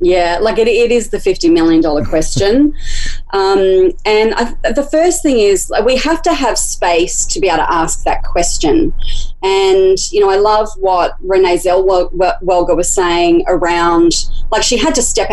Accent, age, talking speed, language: Australian, 30-49, 175 wpm, English